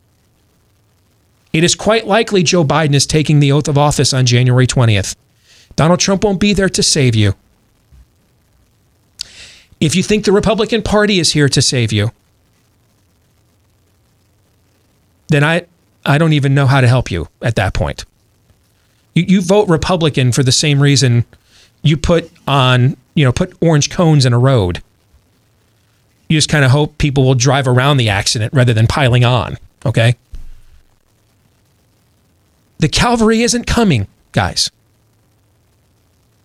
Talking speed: 145 wpm